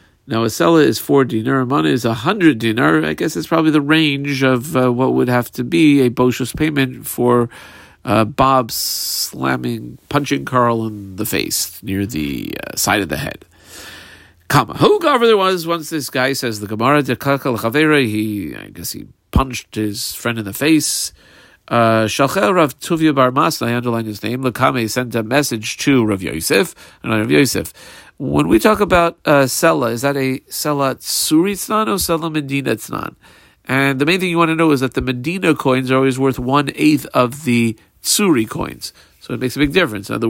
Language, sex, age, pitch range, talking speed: English, male, 50-69, 115-155 Hz, 195 wpm